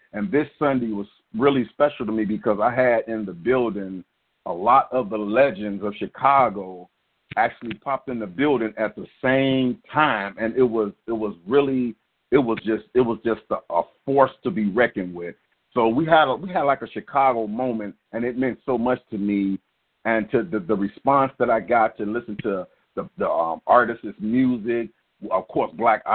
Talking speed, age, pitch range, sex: 195 wpm, 50-69, 110-135 Hz, male